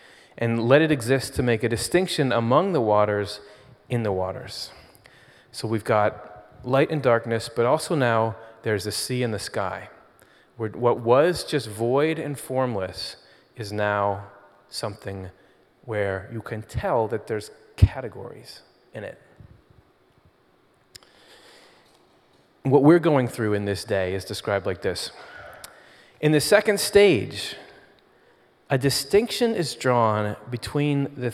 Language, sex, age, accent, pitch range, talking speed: English, male, 30-49, American, 105-140 Hz, 130 wpm